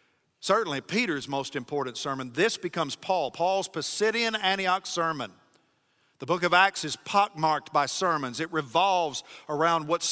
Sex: male